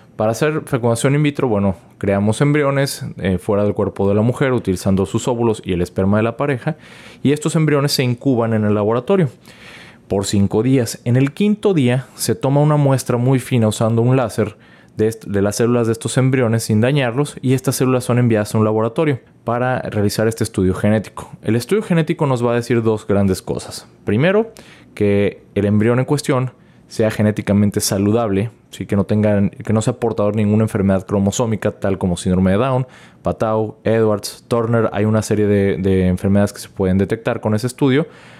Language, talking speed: Spanish, 190 wpm